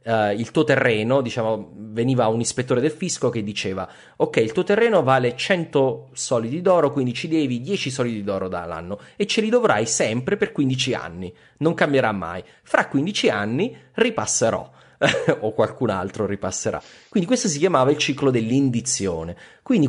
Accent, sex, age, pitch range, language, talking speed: native, male, 30-49, 110-155 Hz, Italian, 165 wpm